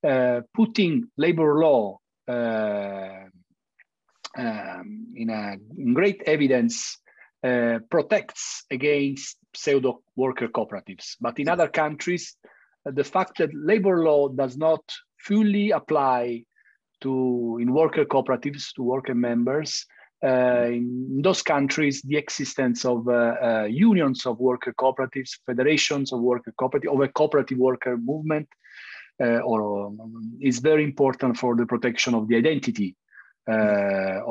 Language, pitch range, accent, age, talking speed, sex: English, 125-175 Hz, Italian, 40-59, 130 wpm, male